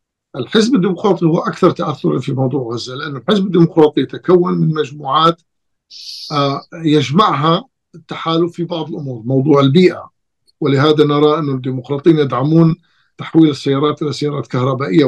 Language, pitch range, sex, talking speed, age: Arabic, 140-170 Hz, male, 125 wpm, 50-69